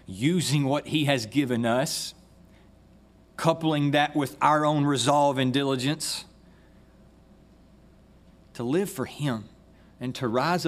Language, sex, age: English, male, 40-59